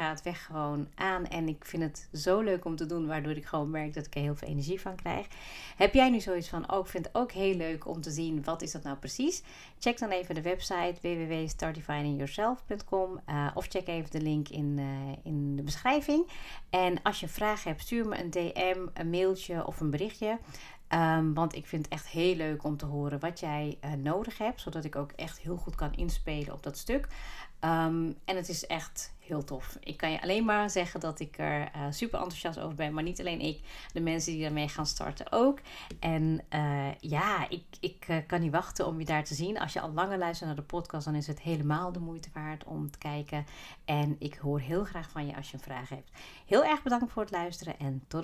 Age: 40-59